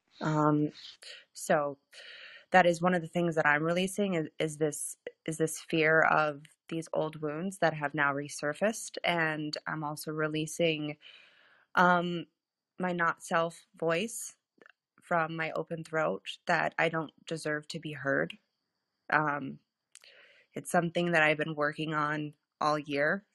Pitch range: 150-170 Hz